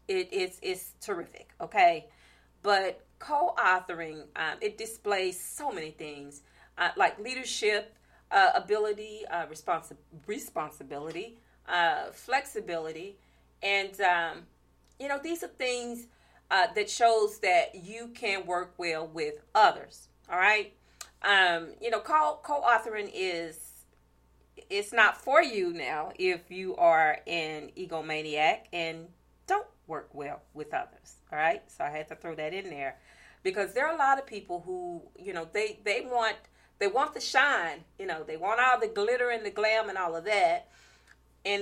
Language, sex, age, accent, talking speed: English, female, 40-59, American, 150 wpm